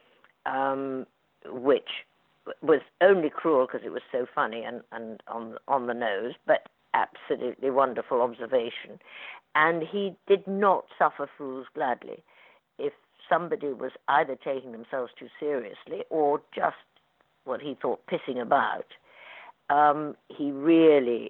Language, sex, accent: English, female, British